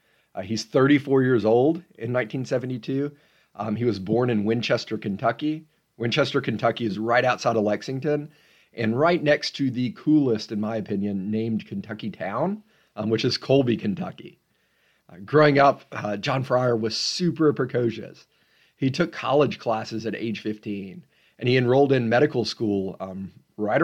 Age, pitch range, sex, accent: 40-59, 110-135 Hz, male, American